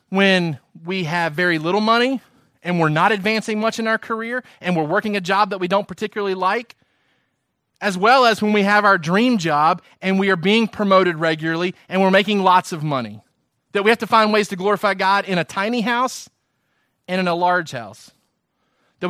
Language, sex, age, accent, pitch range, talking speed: English, male, 30-49, American, 155-200 Hz, 200 wpm